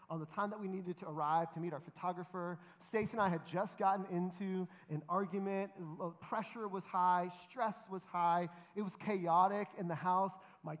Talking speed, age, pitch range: 190 wpm, 30-49, 185-235 Hz